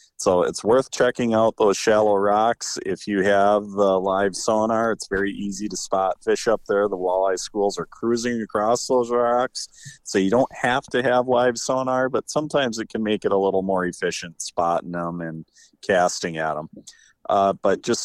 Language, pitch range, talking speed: English, 90-110 Hz, 190 wpm